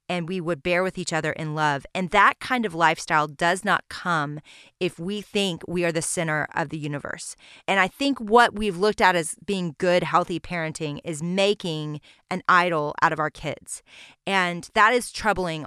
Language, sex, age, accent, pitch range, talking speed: English, female, 30-49, American, 160-210 Hz, 195 wpm